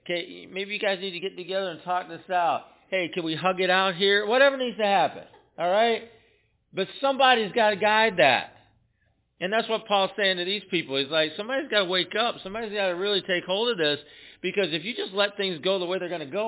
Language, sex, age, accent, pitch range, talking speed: English, male, 50-69, American, 135-205 Hz, 245 wpm